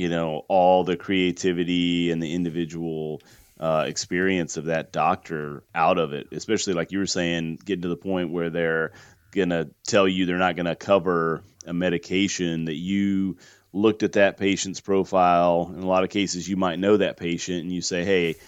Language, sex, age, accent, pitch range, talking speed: English, male, 30-49, American, 85-95 Hz, 190 wpm